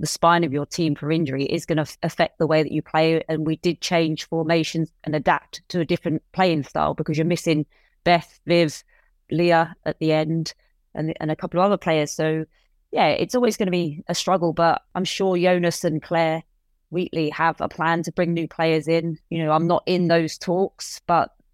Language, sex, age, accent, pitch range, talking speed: English, female, 20-39, British, 160-175 Hz, 210 wpm